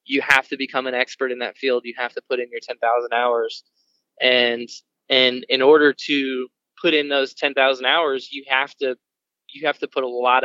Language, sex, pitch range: English, male, 130-210 Hz